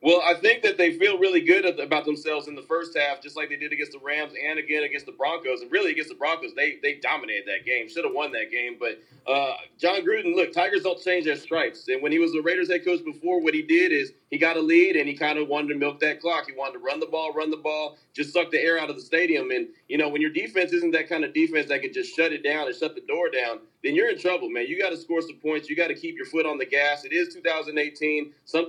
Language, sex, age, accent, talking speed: English, male, 30-49, American, 295 wpm